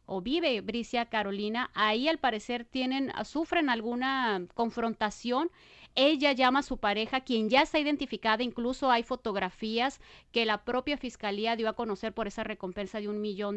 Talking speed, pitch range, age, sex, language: 160 wpm, 210-255 Hz, 30-49, female, Spanish